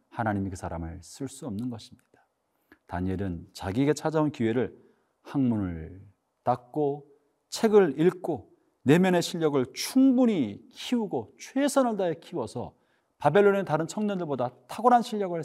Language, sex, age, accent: Korean, male, 40-59, native